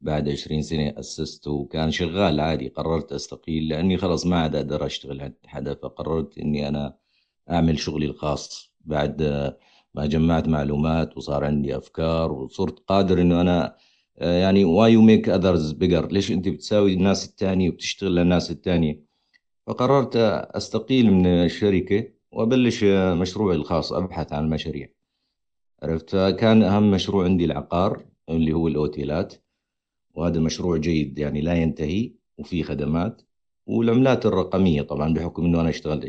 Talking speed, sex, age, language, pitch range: 135 wpm, male, 50-69, Arabic, 75-100 Hz